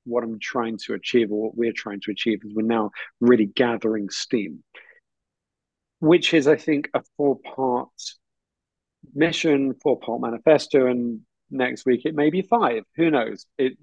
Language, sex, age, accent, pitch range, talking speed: English, male, 40-59, British, 115-155 Hz, 165 wpm